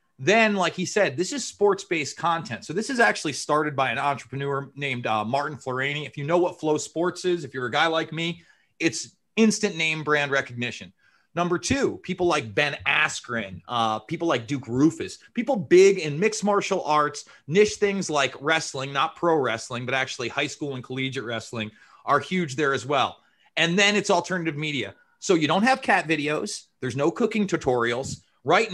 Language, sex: English, male